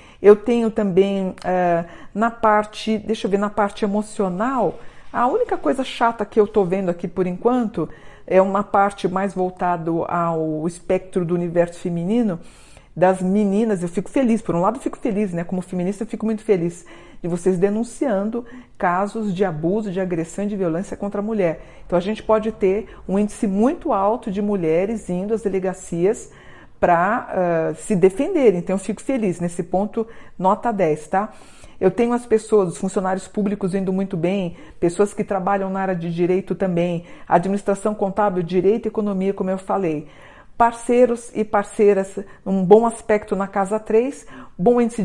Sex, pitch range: female, 180-220 Hz